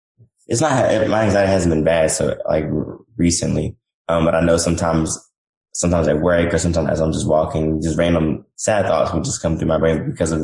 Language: English